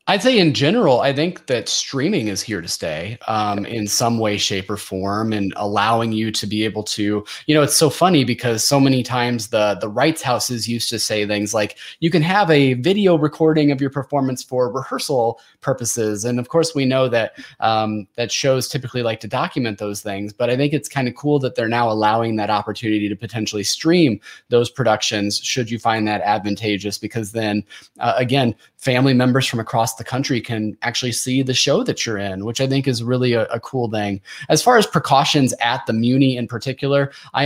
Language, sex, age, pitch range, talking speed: English, male, 20-39, 110-135 Hz, 210 wpm